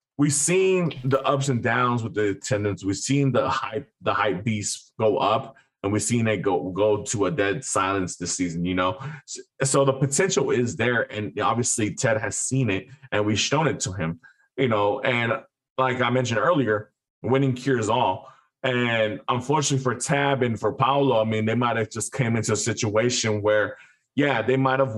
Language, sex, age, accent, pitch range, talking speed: English, male, 20-39, American, 115-135 Hz, 190 wpm